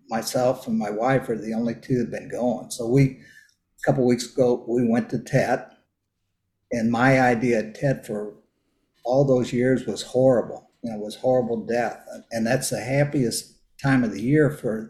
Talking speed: 195 wpm